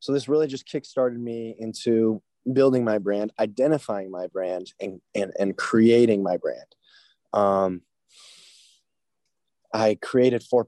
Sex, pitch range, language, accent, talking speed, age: male, 100-115 Hz, English, American, 130 wpm, 20-39